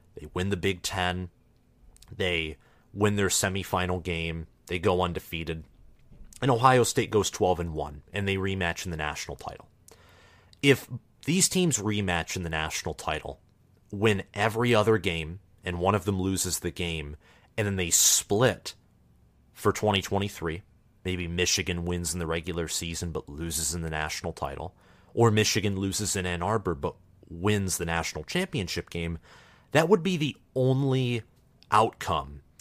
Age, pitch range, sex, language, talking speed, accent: 30-49, 85-115 Hz, male, English, 150 wpm, American